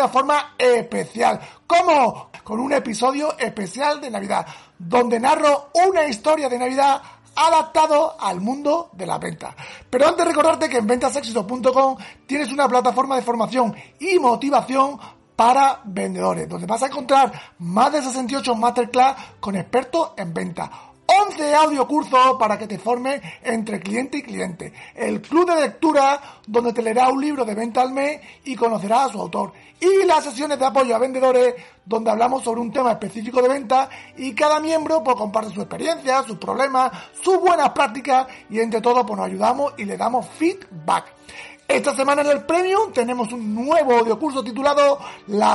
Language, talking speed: Spanish, 165 wpm